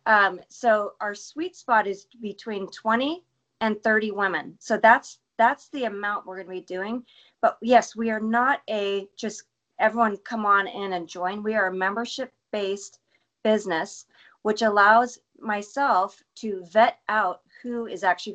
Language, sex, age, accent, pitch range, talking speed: English, female, 40-59, American, 185-230 Hz, 155 wpm